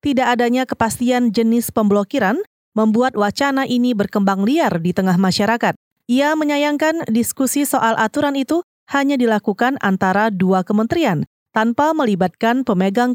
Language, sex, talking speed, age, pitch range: Indonesian, female, 125 wpm, 30-49, 220-275 Hz